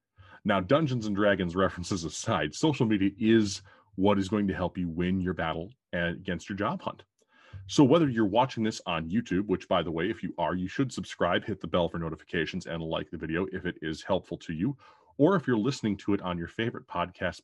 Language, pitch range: English, 85-115 Hz